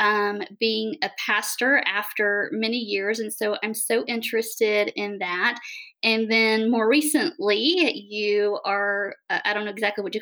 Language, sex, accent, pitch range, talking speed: English, female, American, 210-255 Hz, 155 wpm